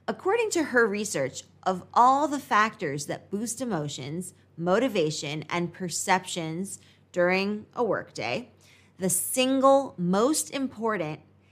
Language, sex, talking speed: English, female, 110 wpm